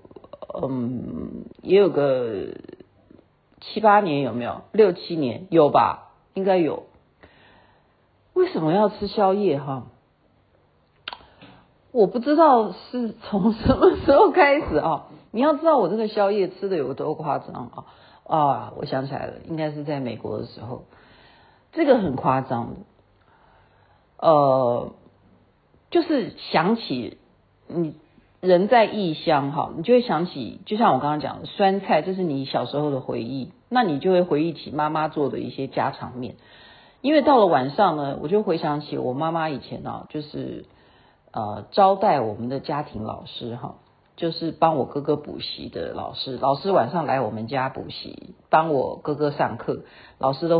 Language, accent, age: Chinese, native, 50-69